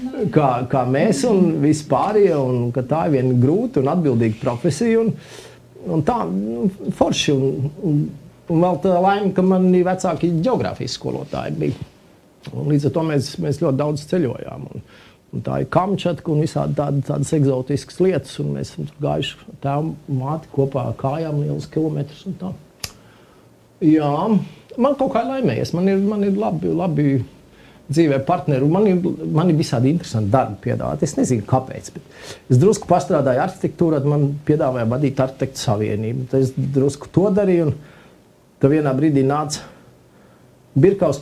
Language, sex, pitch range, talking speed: English, male, 135-180 Hz, 140 wpm